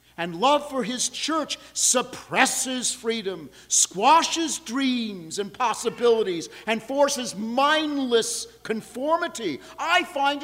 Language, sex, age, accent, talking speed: English, male, 50-69, American, 100 wpm